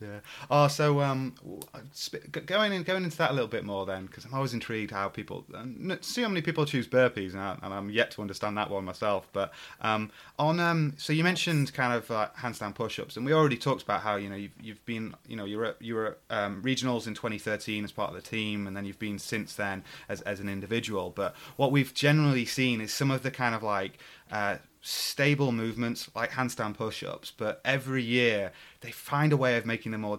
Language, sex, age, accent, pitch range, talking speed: English, male, 30-49, British, 105-130 Hz, 235 wpm